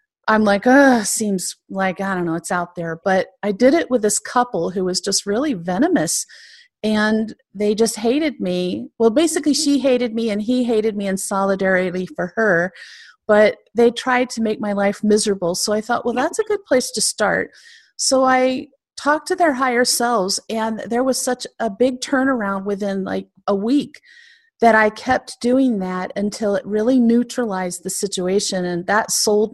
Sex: female